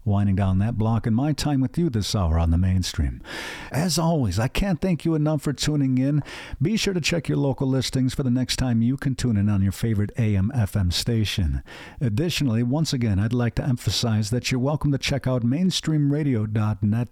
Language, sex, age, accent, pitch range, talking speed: English, male, 50-69, American, 105-135 Hz, 205 wpm